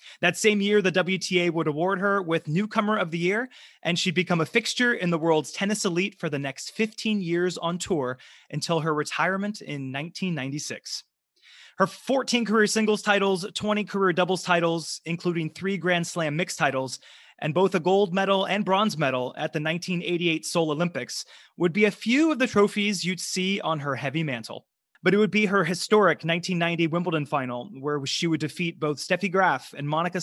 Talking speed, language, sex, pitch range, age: 185 wpm, English, male, 160-210 Hz, 30-49